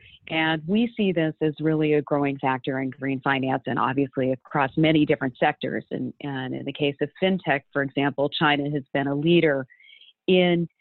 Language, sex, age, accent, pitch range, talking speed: English, female, 40-59, American, 145-170 Hz, 185 wpm